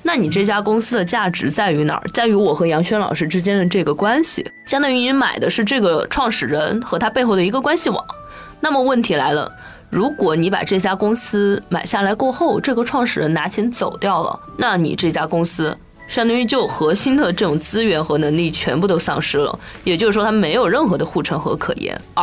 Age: 20-39